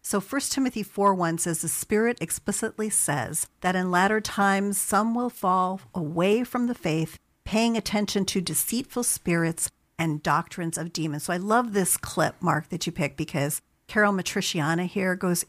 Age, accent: 50-69, American